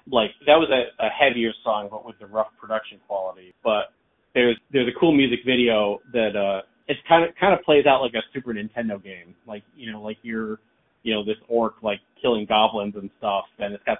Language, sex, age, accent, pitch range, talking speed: English, male, 30-49, American, 105-130 Hz, 220 wpm